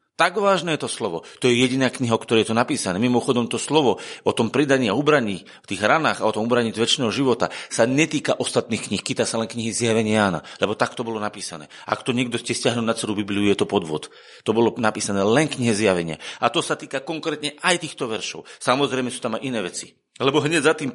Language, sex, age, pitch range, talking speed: Slovak, male, 40-59, 110-140 Hz, 225 wpm